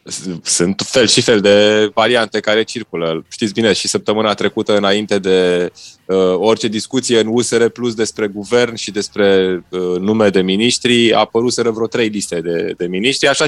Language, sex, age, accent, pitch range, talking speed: Romanian, male, 20-39, native, 95-120 Hz, 160 wpm